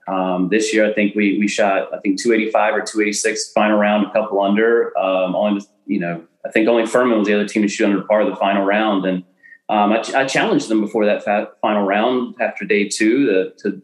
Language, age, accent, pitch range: English, 30-49, American, 95-115 Hz